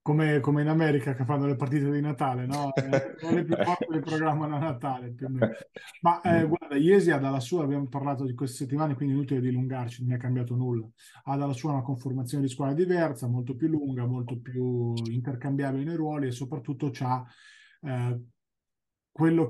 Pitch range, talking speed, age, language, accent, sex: 130-160 Hz, 195 wpm, 30-49, Italian, native, male